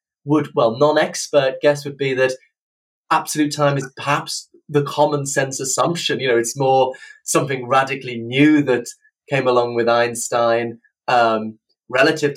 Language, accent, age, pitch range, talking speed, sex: English, British, 30-49, 130-155 Hz, 140 wpm, male